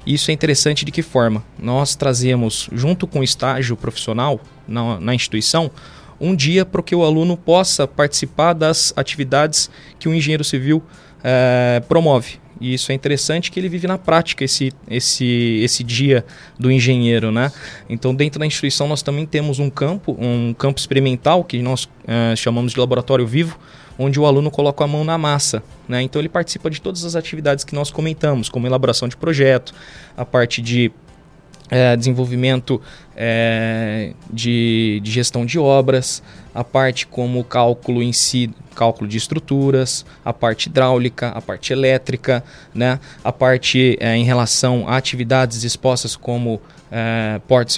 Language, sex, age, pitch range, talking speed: Portuguese, male, 20-39, 120-145 Hz, 160 wpm